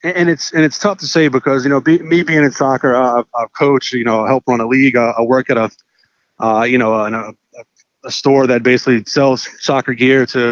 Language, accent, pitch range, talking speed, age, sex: English, American, 120-150 Hz, 245 wpm, 30-49, male